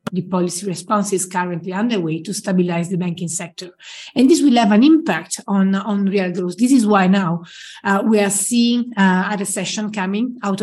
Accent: Italian